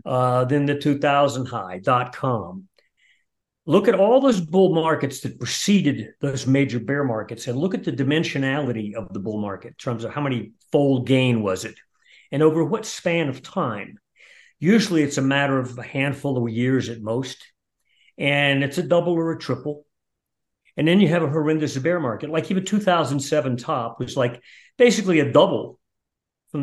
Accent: American